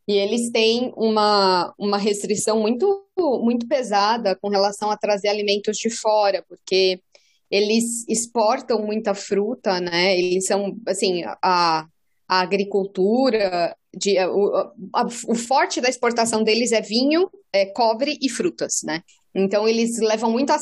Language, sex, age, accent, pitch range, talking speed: Portuguese, female, 20-39, Brazilian, 195-230 Hz, 130 wpm